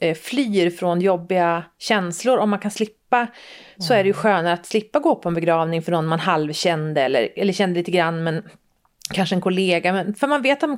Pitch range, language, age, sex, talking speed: 190-260 Hz, Swedish, 30-49, female, 210 wpm